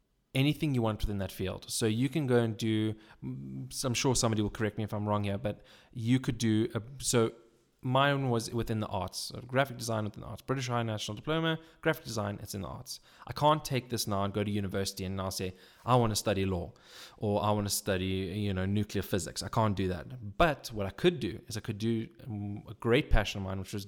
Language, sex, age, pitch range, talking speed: English, male, 20-39, 100-125 Hz, 240 wpm